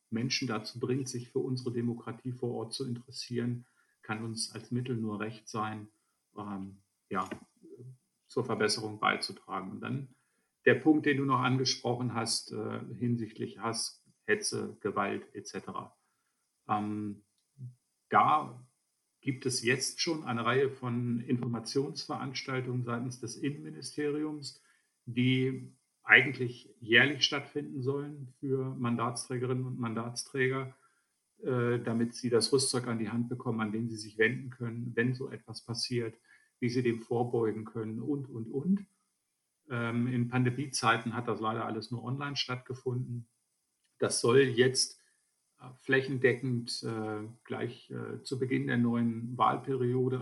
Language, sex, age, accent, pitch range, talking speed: German, male, 50-69, German, 115-130 Hz, 125 wpm